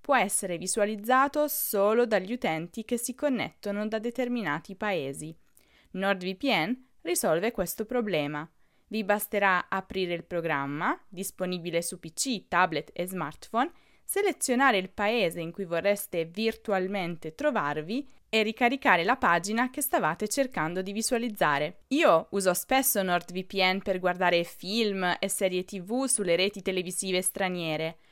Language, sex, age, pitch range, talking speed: Italian, female, 20-39, 180-245 Hz, 125 wpm